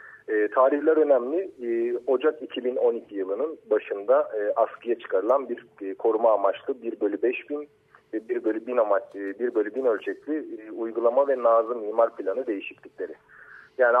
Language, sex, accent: Turkish, male, native